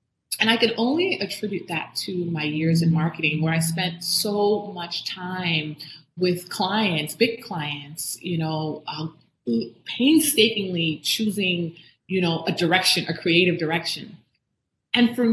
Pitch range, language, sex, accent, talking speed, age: 165-215 Hz, English, female, American, 135 wpm, 30-49